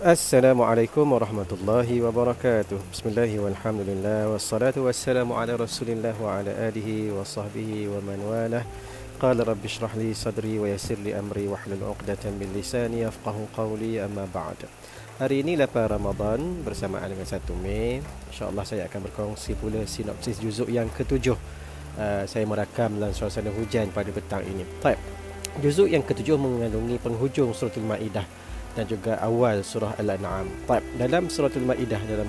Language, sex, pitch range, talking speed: Malay, male, 105-120 Hz, 140 wpm